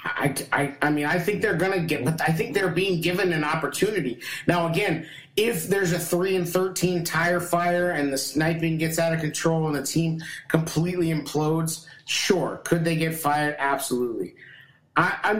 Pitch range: 140-175 Hz